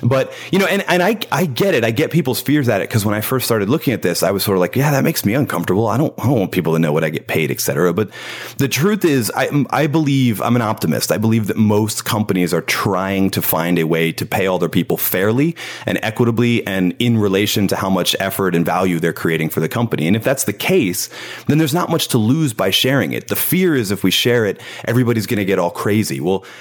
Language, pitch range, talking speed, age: English, 95-125 Hz, 265 wpm, 30-49